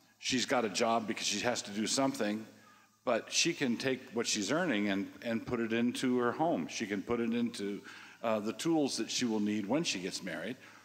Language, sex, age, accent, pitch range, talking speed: English, male, 50-69, American, 105-120 Hz, 220 wpm